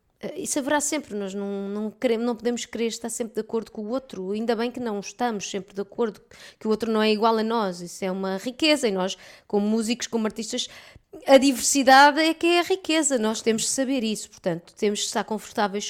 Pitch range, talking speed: 200-250 Hz, 220 wpm